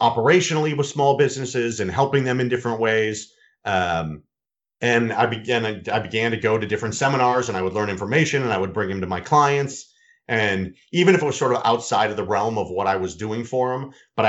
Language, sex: English, male